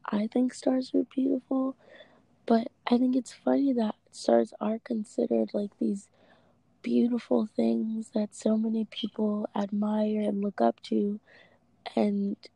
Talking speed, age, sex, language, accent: 135 wpm, 20-39, female, English, American